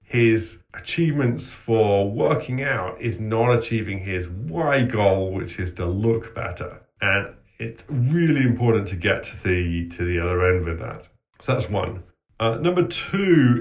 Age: 30-49